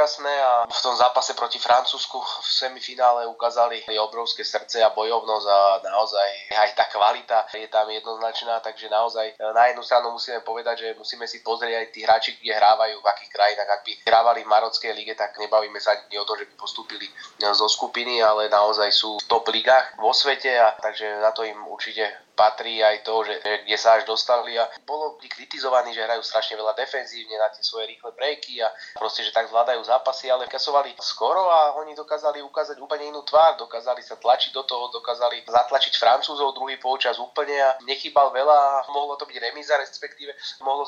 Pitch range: 110-130 Hz